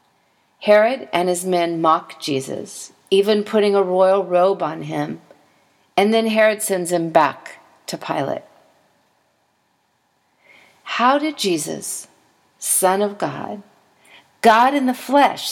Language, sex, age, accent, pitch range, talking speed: English, female, 40-59, American, 160-210 Hz, 120 wpm